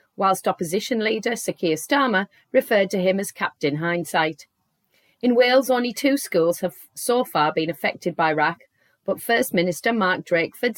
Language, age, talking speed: English, 30-49, 155 wpm